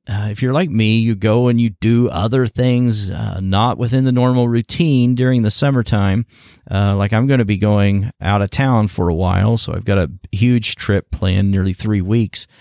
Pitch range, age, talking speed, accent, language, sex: 100-125 Hz, 40-59, 210 wpm, American, English, male